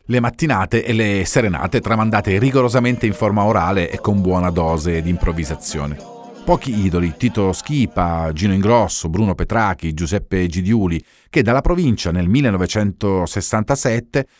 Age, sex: 40-59, male